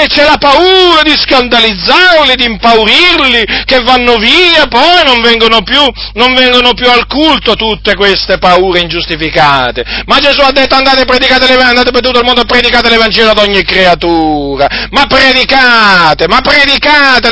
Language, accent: Italian, native